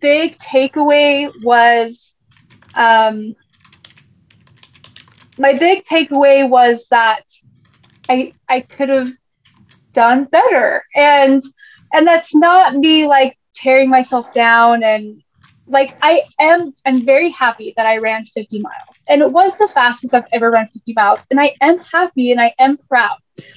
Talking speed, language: 135 wpm, English